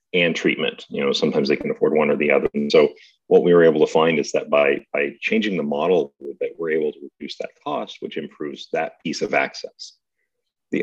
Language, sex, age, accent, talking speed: English, male, 40-59, American, 225 wpm